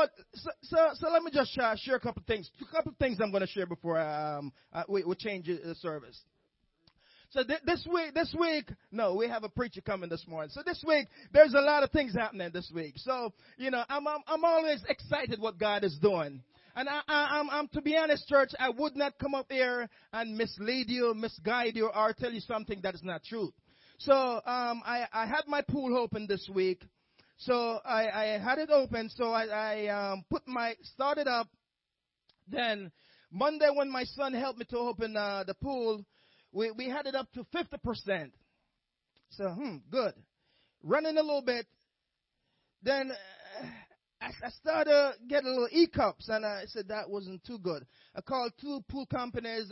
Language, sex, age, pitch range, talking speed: English, male, 30-49, 210-280 Hz, 195 wpm